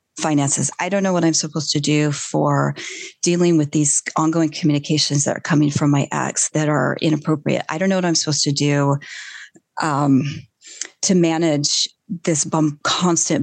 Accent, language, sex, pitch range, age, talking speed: American, English, female, 145-170 Hz, 30-49, 170 wpm